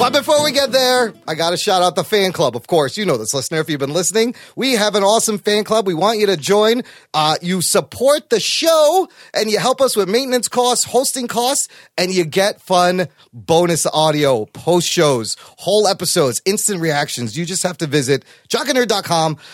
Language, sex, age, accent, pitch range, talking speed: English, male, 30-49, American, 165-245 Hz, 205 wpm